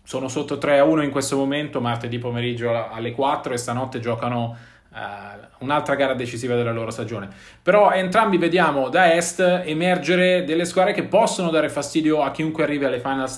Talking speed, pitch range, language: 170 wpm, 135-170 Hz, Italian